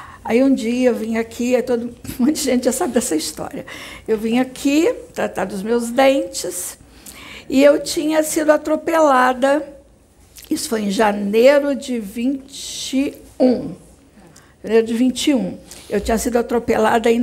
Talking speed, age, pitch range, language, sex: 140 wpm, 60-79, 225-275 Hz, Portuguese, female